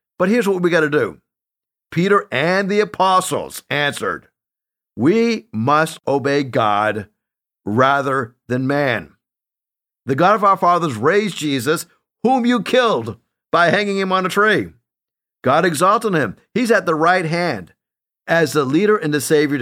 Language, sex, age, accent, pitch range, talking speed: English, male, 50-69, American, 145-190 Hz, 150 wpm